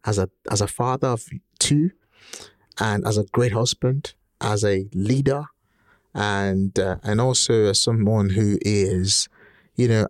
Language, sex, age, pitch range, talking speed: English, male, 30-49, 100-125 Hz, 150 wpm